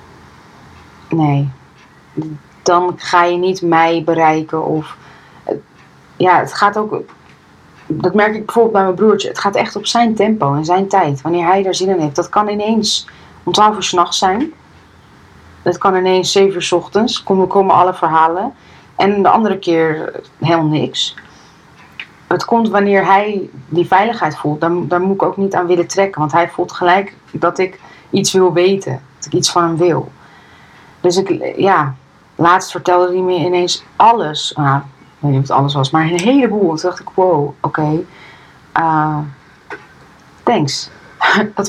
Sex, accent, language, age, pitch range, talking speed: female, Dutch, Dutch, 30-49, 155-190 Hz, 175 wpm